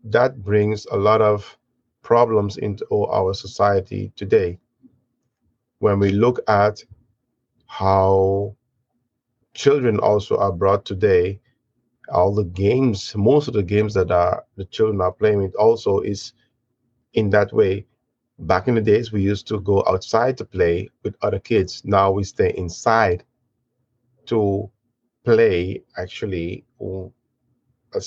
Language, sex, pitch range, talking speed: English, male, 100-120 Hz, 130 wpm